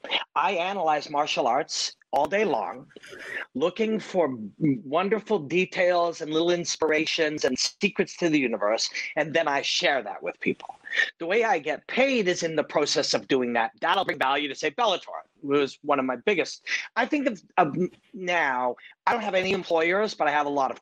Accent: American